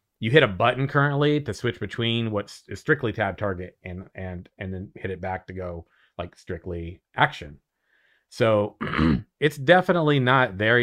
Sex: male